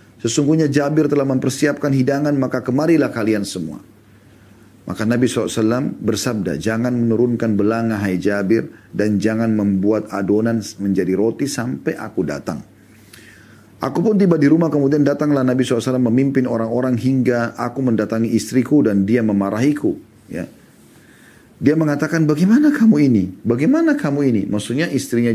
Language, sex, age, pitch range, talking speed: Indonesian, male, 40-59, 105-150 Hz, 135 wpm